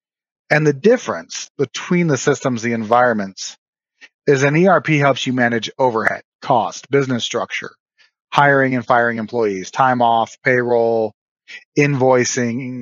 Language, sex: English, male